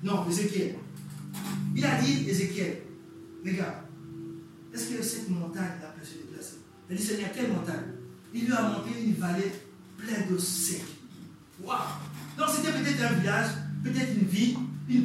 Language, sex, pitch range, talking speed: French, male, 170-270 Hz, 165 wpm